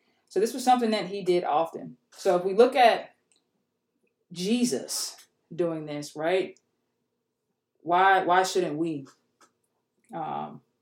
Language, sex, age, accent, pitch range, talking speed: English, female, 20-39, American, 175-220 Hz, 120 wpm